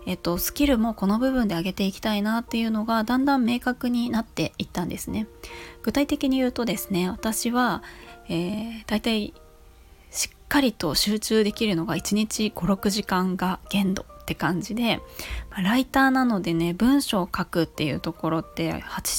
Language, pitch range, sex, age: Japanese, 175-235 Hz, female, 20-39